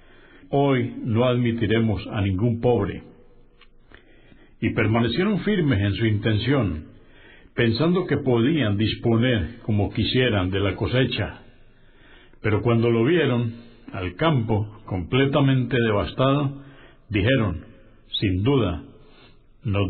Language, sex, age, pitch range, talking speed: Spanish, male, 60-79, 105-135 Hz, 100 wpm